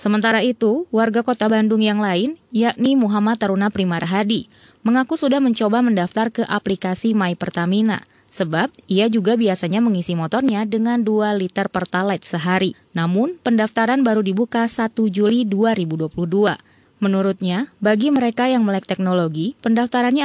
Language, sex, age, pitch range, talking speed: Indonesian, female, 20-39, 170-230 Hz, 135 wpm